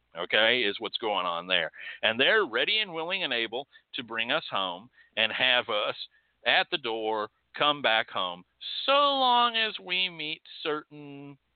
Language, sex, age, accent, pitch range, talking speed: English, male, 50-69, American, 110-150 Hz, 165 wpm